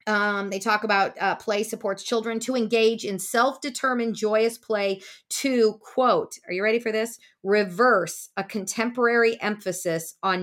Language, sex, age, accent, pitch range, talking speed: English, female, 40-59, American, 185-225 Hz, 150 wpm